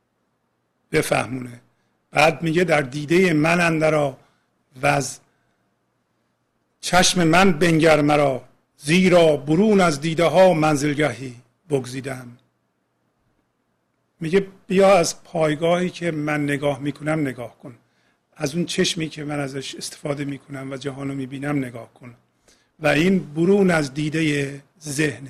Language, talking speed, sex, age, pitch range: Persian, 115 wpm, male, 50-69, 135-155 Hz